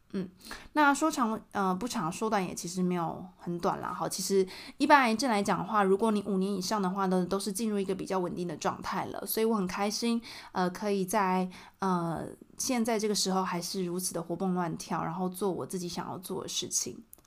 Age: 20-39